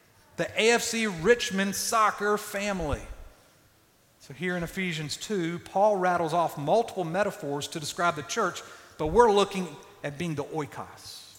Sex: male